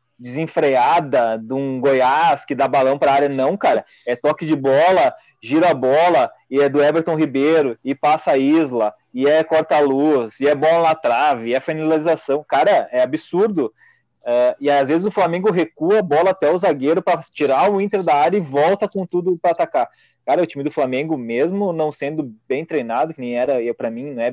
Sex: male